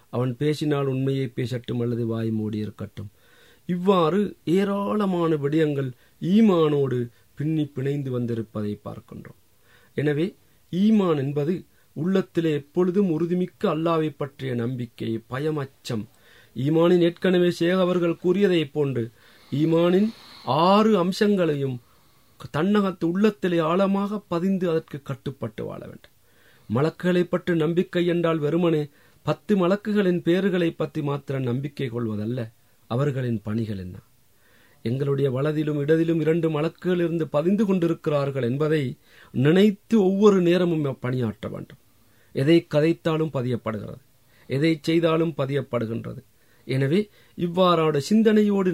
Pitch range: 120-170 Hz